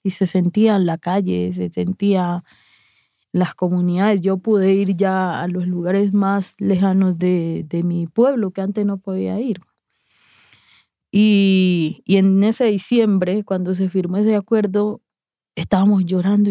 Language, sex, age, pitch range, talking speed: English, female, 20-39, 180-205 Hz, 150 wpm